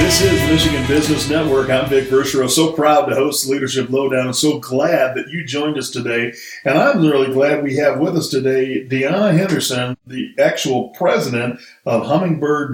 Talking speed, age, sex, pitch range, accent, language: 180 wpm, 50-69, male, 130-155 Hz, American, English